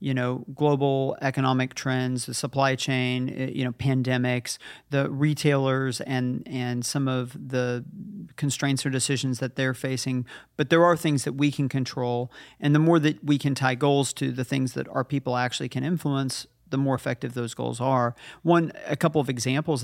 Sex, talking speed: male, 180 wpm